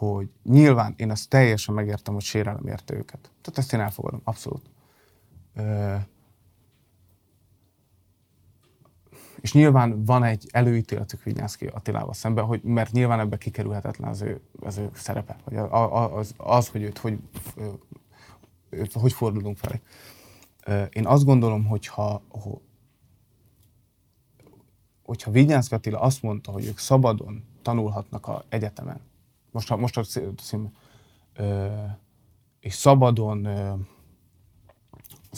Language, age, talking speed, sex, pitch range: Hungarian, 30-49, 105 wpm, male, 105-130 Hz